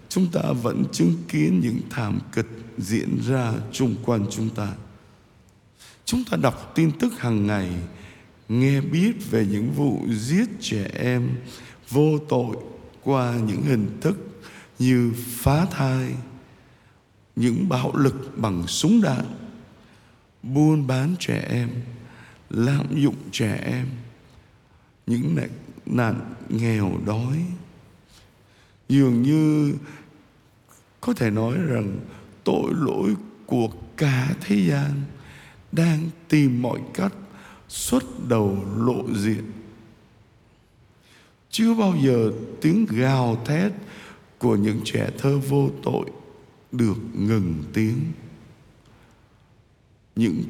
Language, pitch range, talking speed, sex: Vietnamese, 110-145 Hz, 110 wpm, male